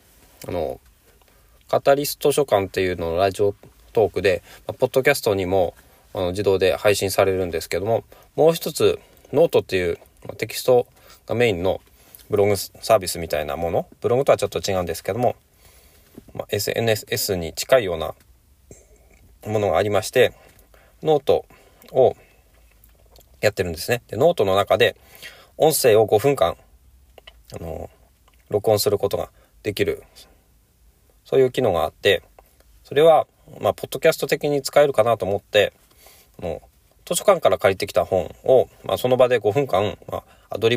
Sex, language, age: male, Japanese, 20-39